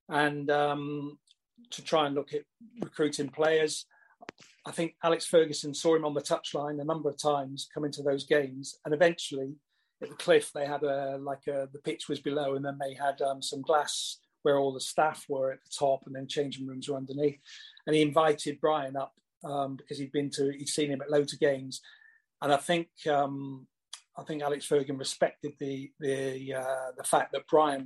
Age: 40-59